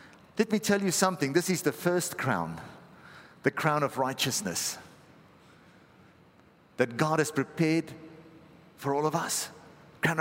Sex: male